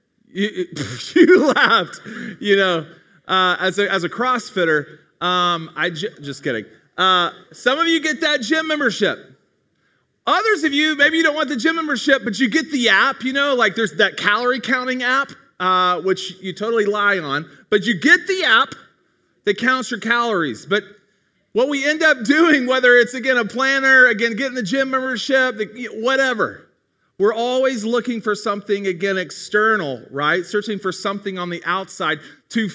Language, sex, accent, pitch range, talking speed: English, male, American, 170-255 Hz, 170 wpm